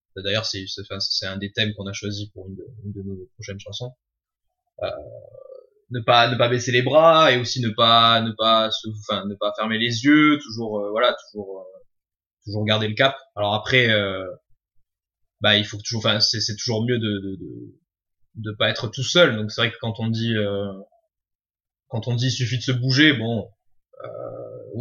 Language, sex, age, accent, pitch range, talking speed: French, male, 20-39, French, 100-125 Hz, 205 wpm